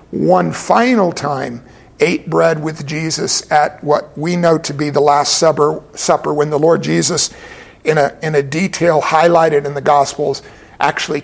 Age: 50-69